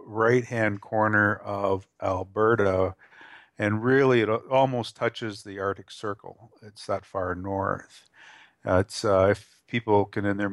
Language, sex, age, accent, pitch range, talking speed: English, male, 50-69, American, 95-115 Hz, 140 wpm